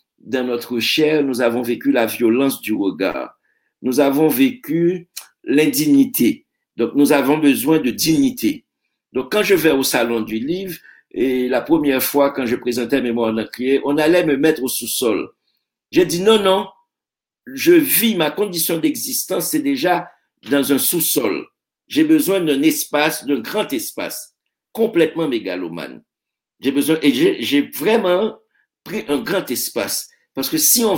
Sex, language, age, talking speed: male, French, 60-79, 155 wpm